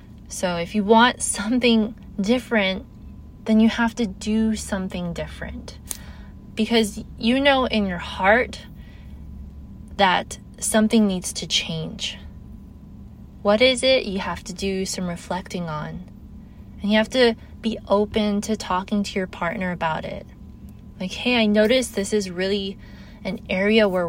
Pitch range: 180-225 Hz